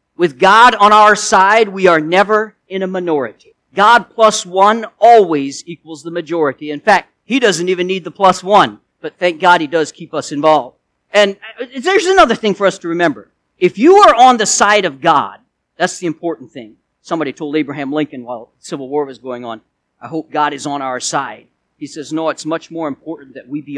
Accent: American